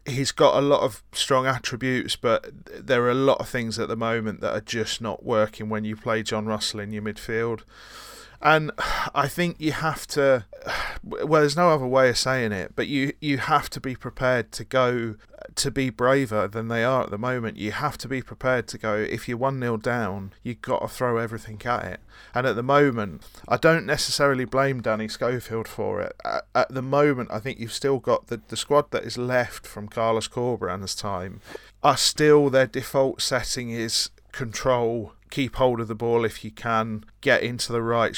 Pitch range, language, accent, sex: 110-135 Hz, English, British, male